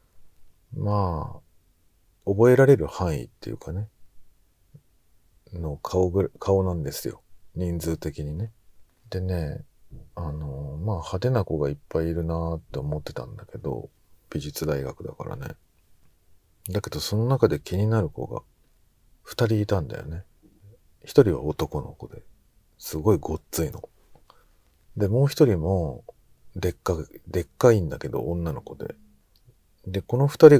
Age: 40-59